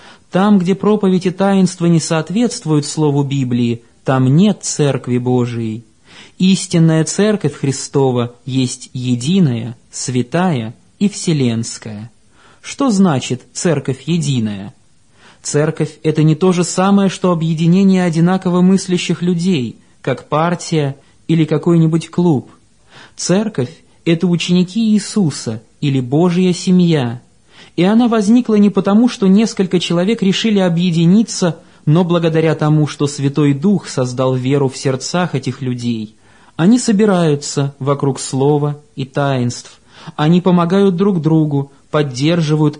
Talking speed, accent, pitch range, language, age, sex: 110 wpm, native, 140-190 Hz, Russian, 20-39, male